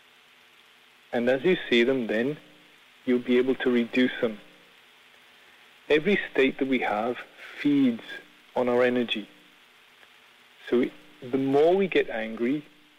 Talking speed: 125 wpm